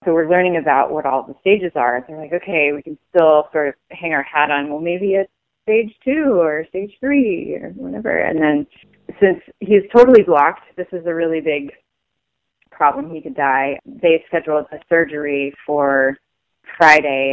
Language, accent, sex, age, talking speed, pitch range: English, American, female, 30-49, 185 wpm, 145-170 Hz